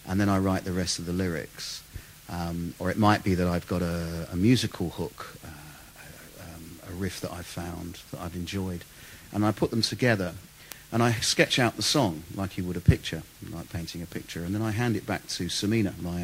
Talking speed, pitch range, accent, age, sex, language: 220 wpm, 90-105 Hz, British, 50-69, male, English